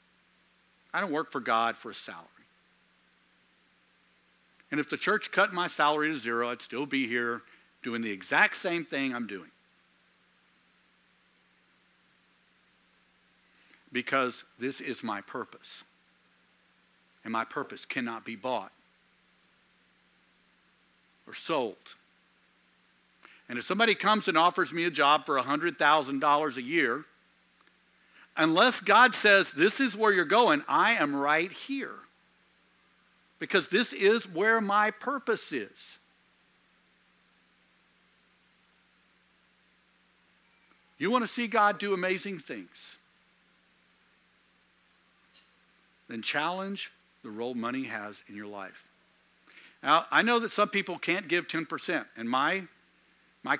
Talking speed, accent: 115 wpm, American